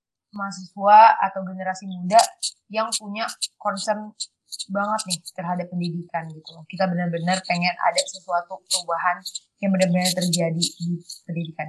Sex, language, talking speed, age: female, Indonesian, 120 wpm, 20-39